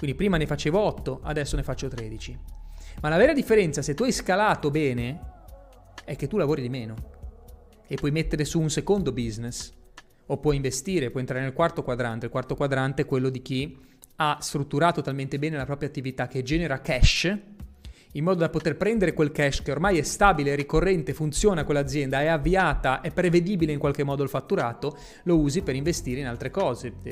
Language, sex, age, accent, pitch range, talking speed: Italian, male, 30-49, native, 130-160 Hz, 190 wpm